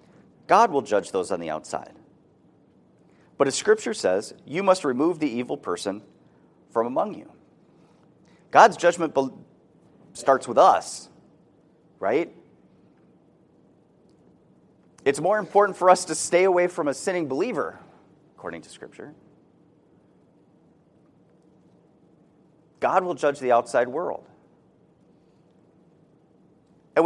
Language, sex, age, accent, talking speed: English, male, 30-49, American, 105 wpm